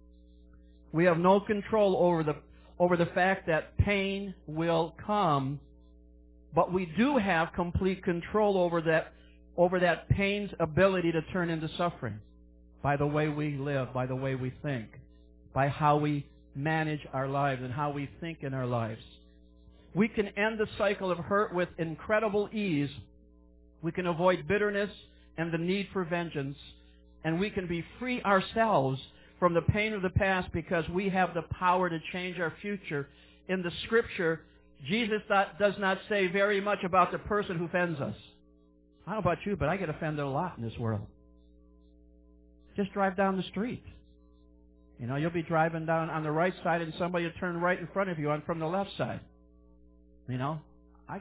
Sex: male